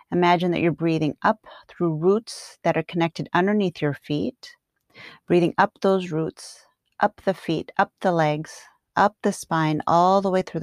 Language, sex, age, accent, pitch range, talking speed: English, female, 40-59, American, 155-195 Hz, 170 wpm